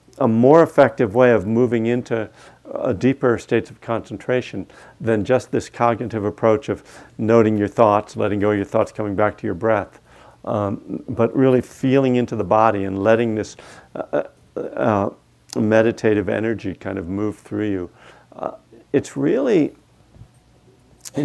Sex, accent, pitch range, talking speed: male, American, 110-140 Hz, 155 wpm